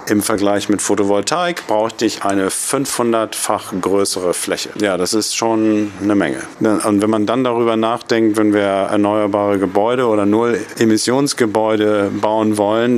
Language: German